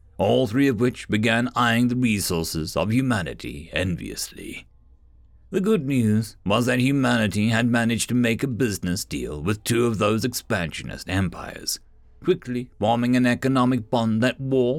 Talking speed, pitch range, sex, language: 150 wpm, 100-135 Hz, male, English